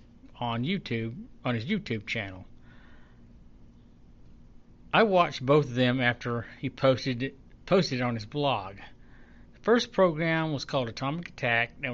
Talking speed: 140 wpm